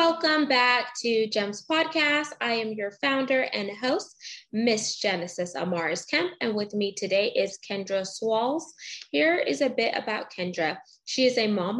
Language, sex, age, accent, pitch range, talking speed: English, female, 20-39, American, 200-260 Hz, 165 wpm